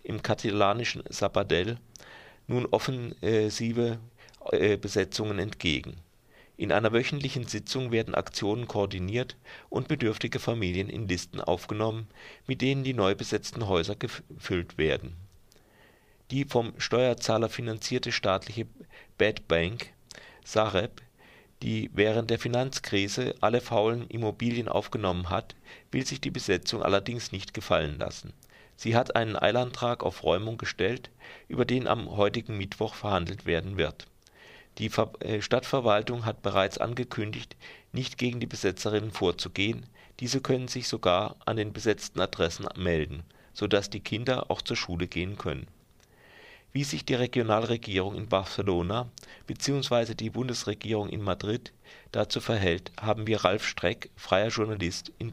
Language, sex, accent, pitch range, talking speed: German, male, German, 100-120 Hz, 125 wpm